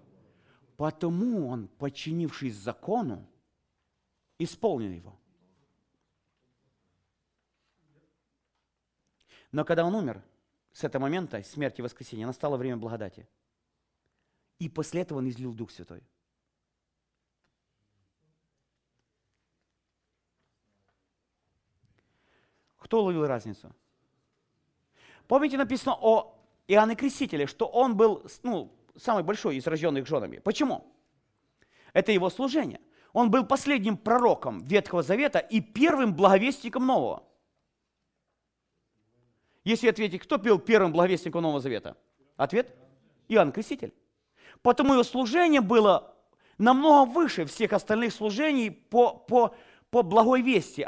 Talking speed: 95 wpm